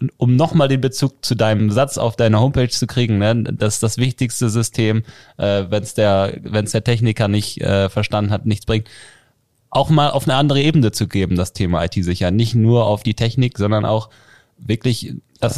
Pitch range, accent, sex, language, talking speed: 100-125 Hz, German, male, German, 190 wpm